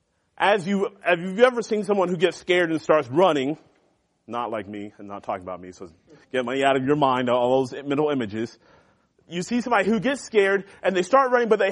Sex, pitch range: male, 155-225 Hz